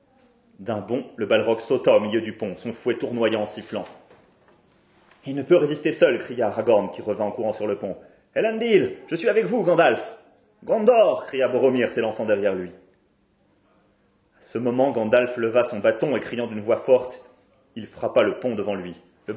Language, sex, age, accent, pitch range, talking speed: French, male, 30-49, French, 100-130 Hz, 185 wpm